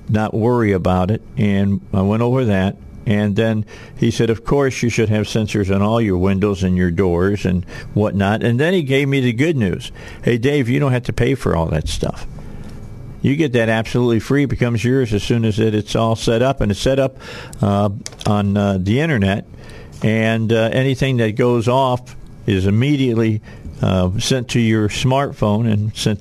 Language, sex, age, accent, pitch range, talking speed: English, male, 50-69, American, 100-120 Hz, 195 wpm